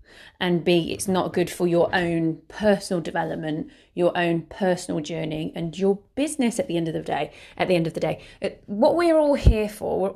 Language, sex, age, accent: English, female, 30-49, British